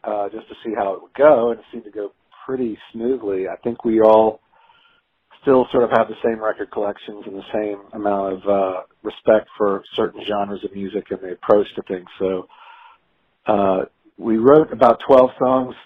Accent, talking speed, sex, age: American, 195 wpm, male, 50-69